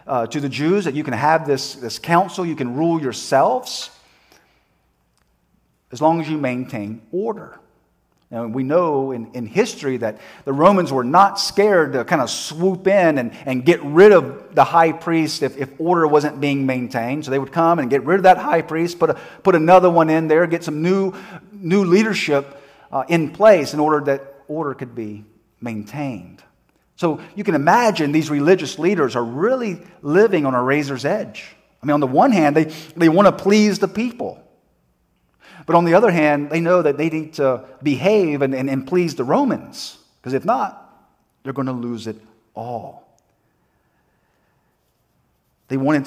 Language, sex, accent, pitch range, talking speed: English, male, American, 130-170 Hz, 185 wpm